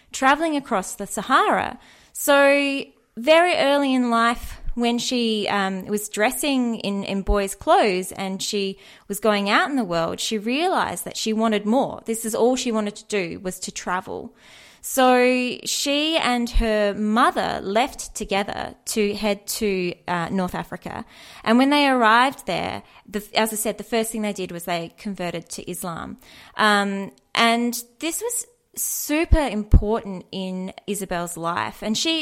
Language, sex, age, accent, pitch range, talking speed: English, female, 20-39, Australian, 190-255 Hz, 155 wpm